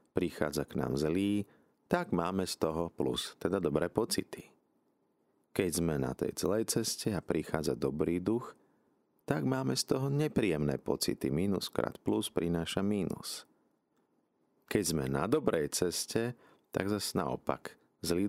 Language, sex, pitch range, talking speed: Slovak, male, 70-95 Hz, 140 wpm